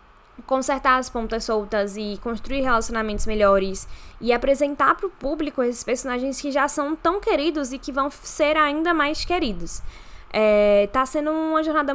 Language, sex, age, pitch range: Portuguese, female, 10-29, 210-270 Hz